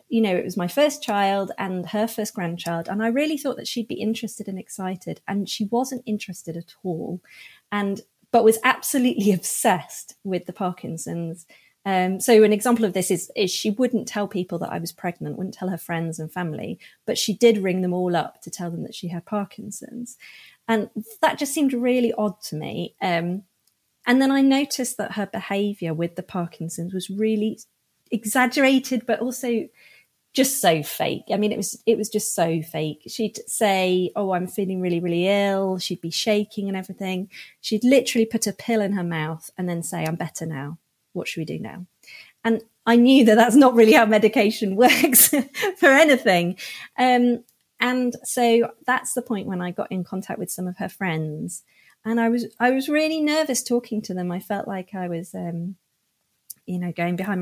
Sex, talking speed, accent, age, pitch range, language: female, 195 wpm, British, 30-49, 180-235 Hz, English